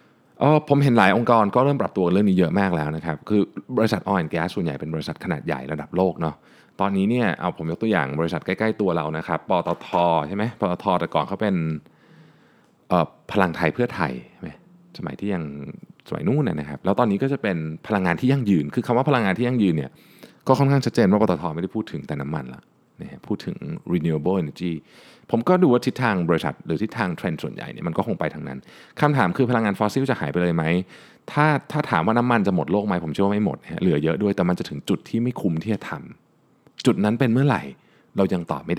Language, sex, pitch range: Thai, male, 80-120 Hz